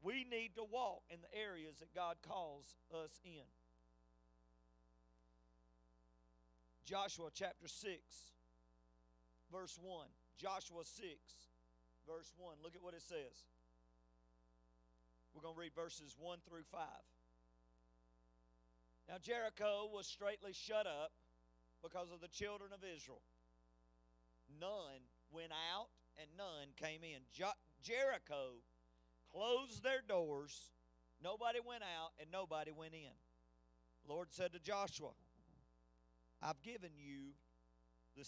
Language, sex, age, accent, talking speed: English, male, 40-59, American, 115 wpm